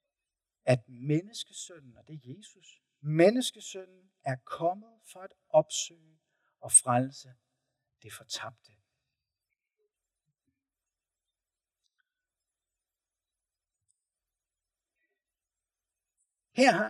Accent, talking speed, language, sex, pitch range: native, 60 wpm, Danish, male, 125-195 Hz